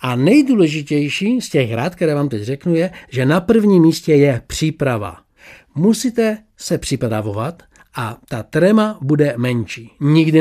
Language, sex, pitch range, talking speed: Czech, male, 135-215 Hz, 145 wpm